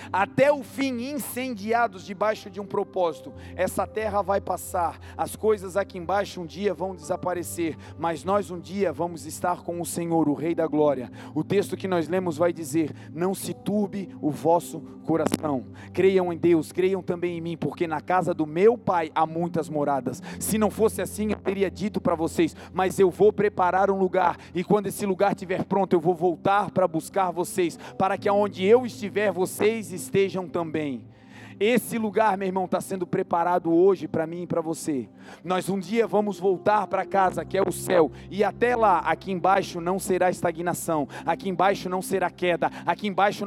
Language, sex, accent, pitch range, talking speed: Portuguese, male, Brazilian, 170-205 Hz, 190 wpm